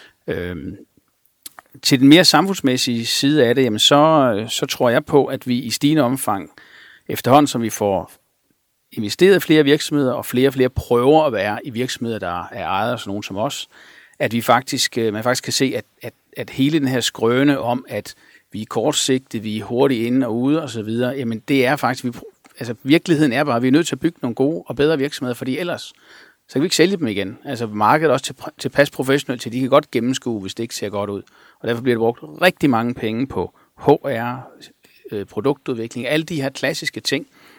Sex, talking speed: male, 215 wpm